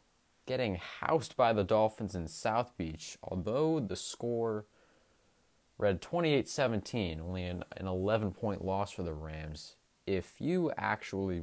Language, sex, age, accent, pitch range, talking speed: English, male, 20-39, American, 90-130 Hz, 120 wpm